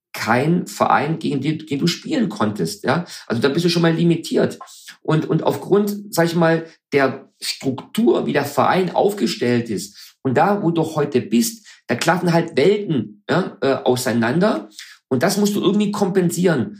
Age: 50-69